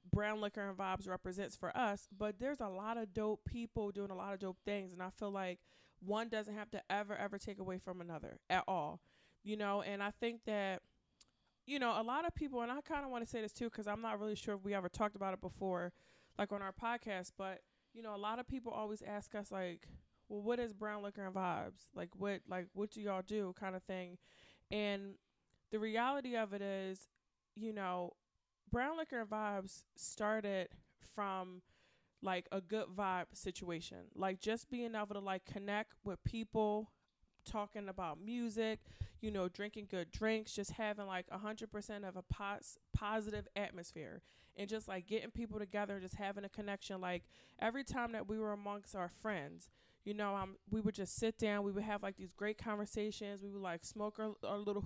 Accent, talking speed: American, 205 wpm